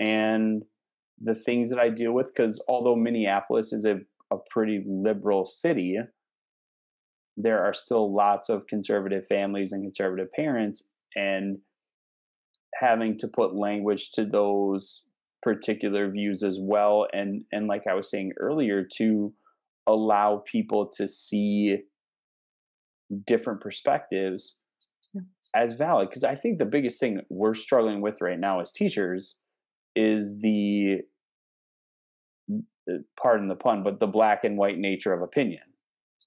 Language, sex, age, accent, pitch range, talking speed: English, male, 20-39, American, 100-110 Hz, 130 wpm